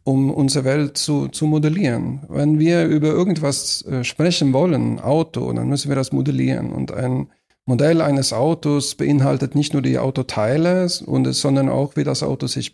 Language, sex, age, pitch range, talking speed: German, male, 50-69, 125-155 Hz, 165 wpm